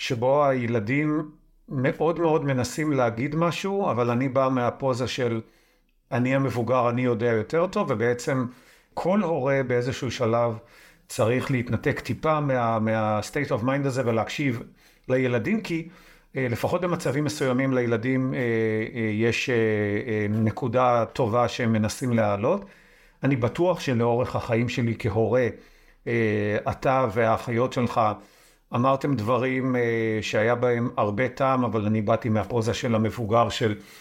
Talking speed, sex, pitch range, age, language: 115 wpm, male, 115-140 Hz, 50-69, Hebrew